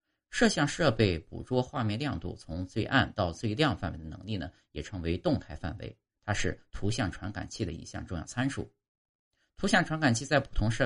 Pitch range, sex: 90-125 Hz, male